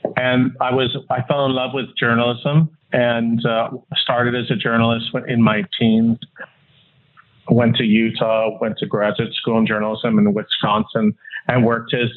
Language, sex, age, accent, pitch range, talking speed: English, male, 40-59, American, 115-135 Hz, 160 wpm